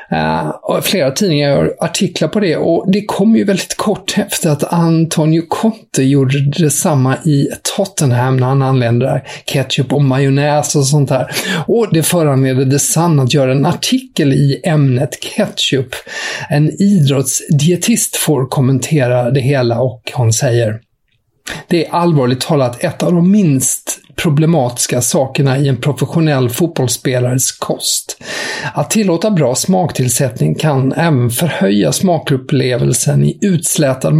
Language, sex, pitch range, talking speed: English, male, 130-170 Hz, 130 wpm